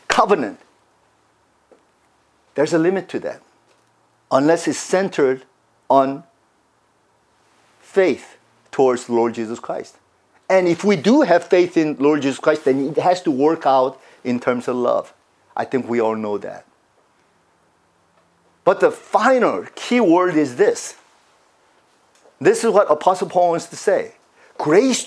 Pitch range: 145-240 Hz